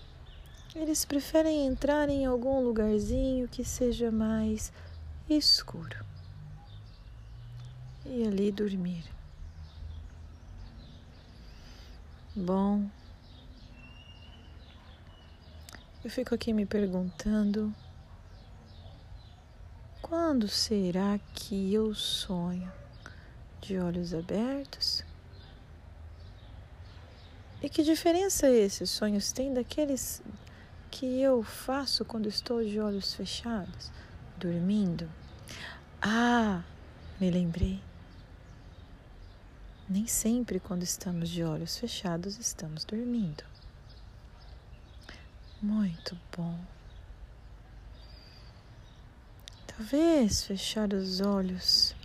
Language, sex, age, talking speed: Portuguese, female, 30-49, 70 wpm